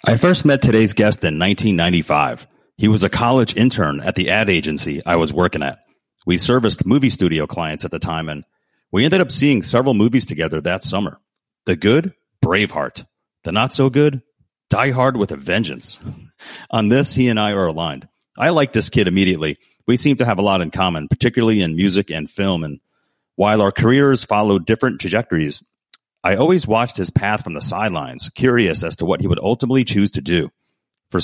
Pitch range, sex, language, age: 90-125 Hz, male, English, 40-59